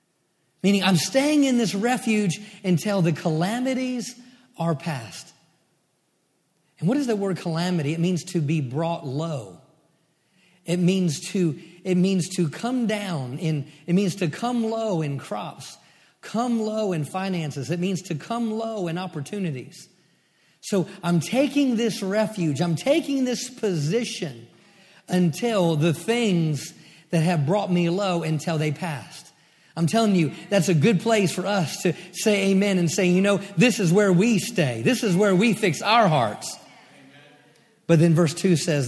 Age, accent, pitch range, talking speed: 40-59, American, 165-215 Hz, 160 wpm